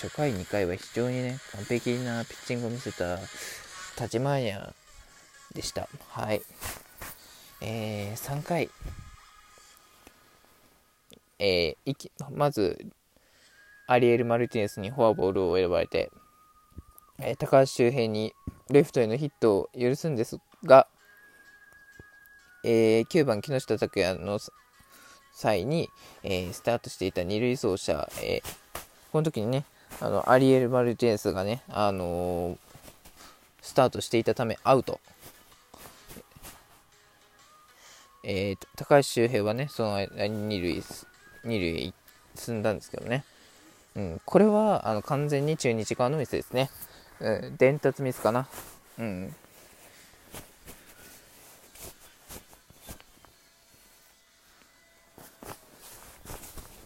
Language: Japanese